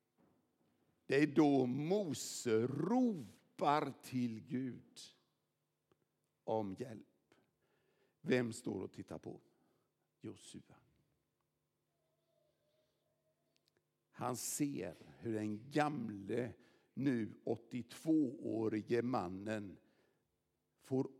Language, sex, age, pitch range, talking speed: English, male, 60-79, 110-145 Hz, 70 wpm